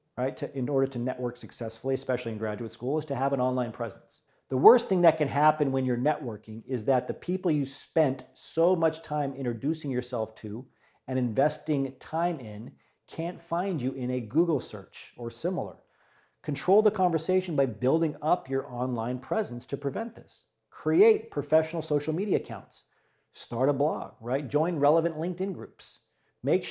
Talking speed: 175 wpm